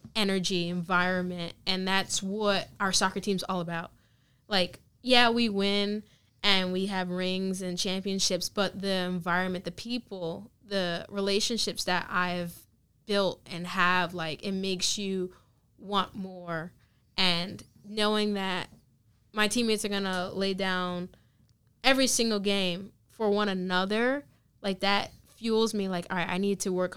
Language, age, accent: English, 10-29, American